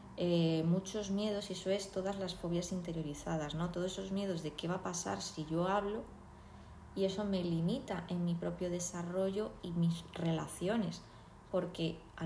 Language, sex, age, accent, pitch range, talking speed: Spanish, female, 20-39, Spanish, 165-190 Hz, 170 wpm